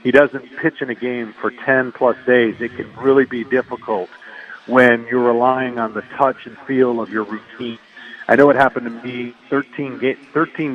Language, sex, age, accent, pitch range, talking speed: English, male, 50-69, American, 115-140 Hz, 190 wpm